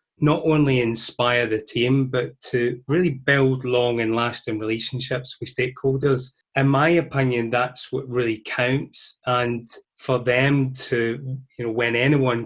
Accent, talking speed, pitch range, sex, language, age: British, 145 wpm, 115-135 Hz, male, English, 30-49